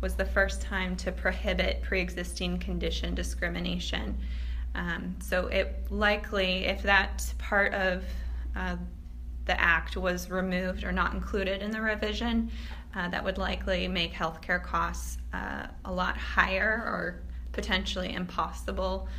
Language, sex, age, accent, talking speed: English, female, 20-39, American, 135 wpm